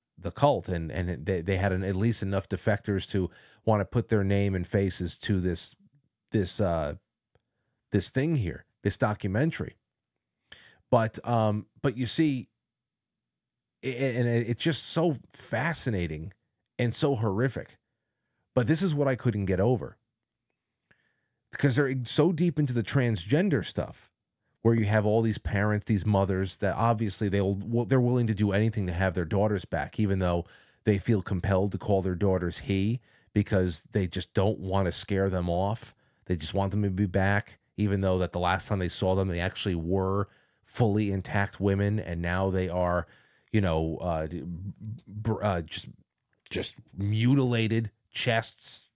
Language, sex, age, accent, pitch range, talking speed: English, male, 30-49, American, 95-115 Hz, 170 wpm